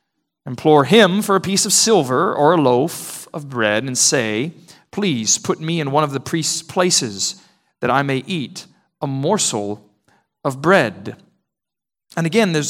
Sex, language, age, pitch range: male, English, 40-59, 130-175 Hz